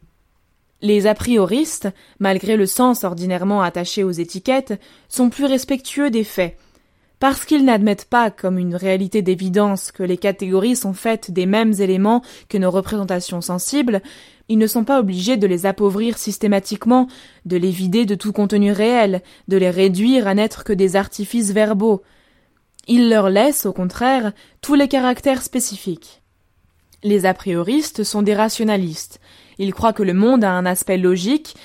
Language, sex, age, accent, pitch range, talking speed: French, female, 20-39, French, 190-230 Hz, 160 wpm